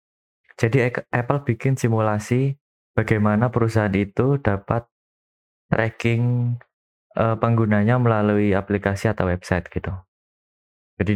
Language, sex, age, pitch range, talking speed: Indonesian, male, 20-39, 100-115 Hz, 85 wpm